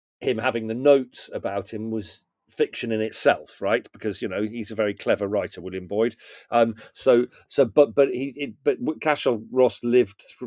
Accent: British